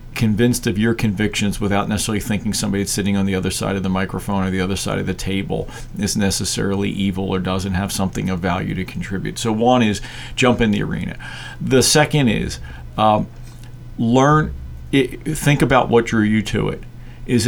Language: English